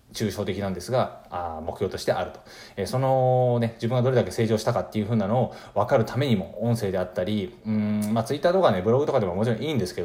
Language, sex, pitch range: Japanese, male, 100-125 Hz